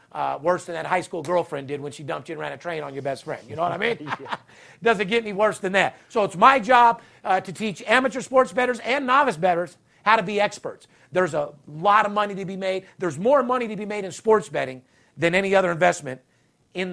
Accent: American